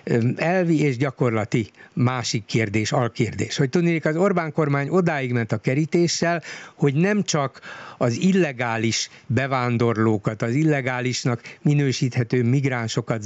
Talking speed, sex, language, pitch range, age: 115 wpm, male, Hungarian, 125-155 Hz, 60-79